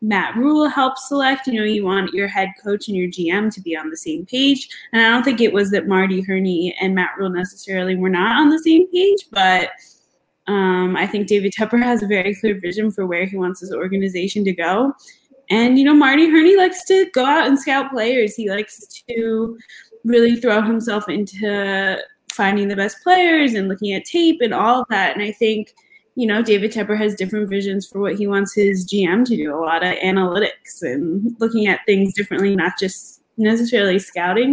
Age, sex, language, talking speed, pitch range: 20-39, female, English, 210 wpm, 195-245 Hz